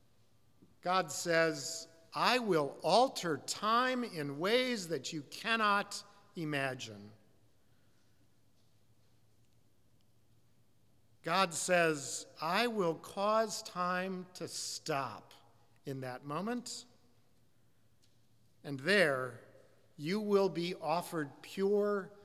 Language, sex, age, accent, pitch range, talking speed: English, male, 50-69, American, 115-195 Hz, 80 wpm